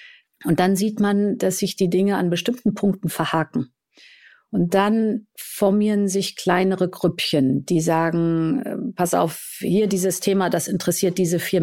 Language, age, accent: German, 50-69, German